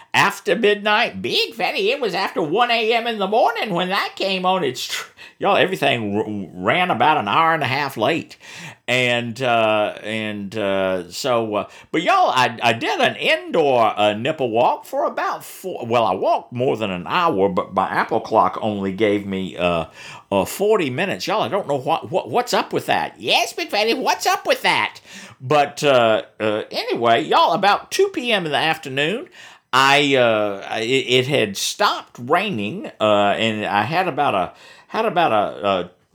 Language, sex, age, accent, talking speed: English, male, 50-69, American, 180 wpm